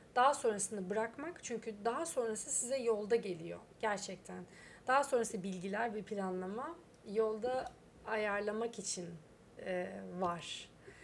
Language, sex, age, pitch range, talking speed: Turkish, female, 30-49, 195-245 Hz, 110 wpm